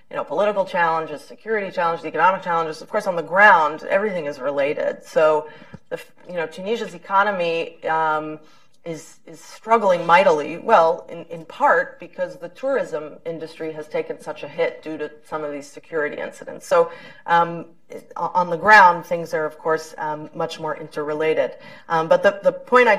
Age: 30-49